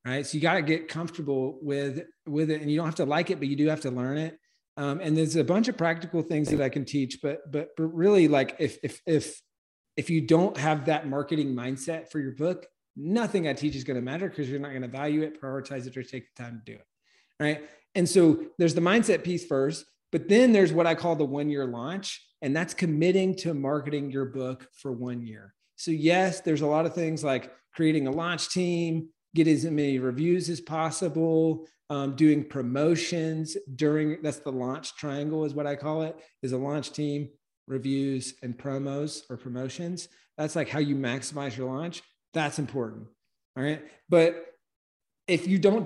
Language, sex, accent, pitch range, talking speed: English, male, American, 140-165 Hz, 210 wpm